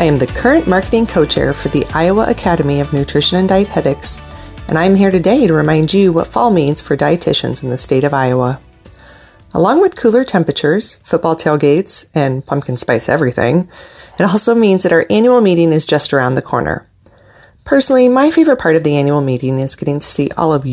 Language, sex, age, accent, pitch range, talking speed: English, female, 30-49, American, 145-200 Hz, 195 wpm